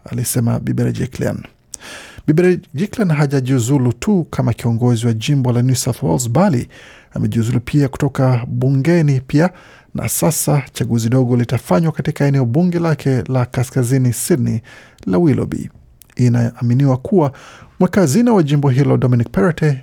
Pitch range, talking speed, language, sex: 120-150 Hz, 135 wpm, Swahili, male